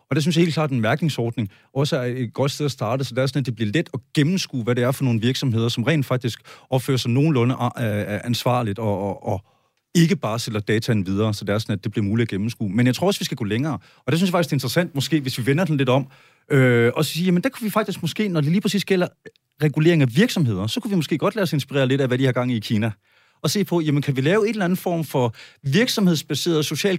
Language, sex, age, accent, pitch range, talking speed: Danish, male, 30-49, native, 125-170 Hz, 285 wpm